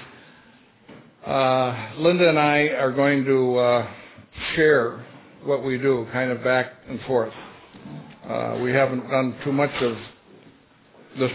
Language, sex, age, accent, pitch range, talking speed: English, male, 60-79, American, 125-140 Hz, 130 wpm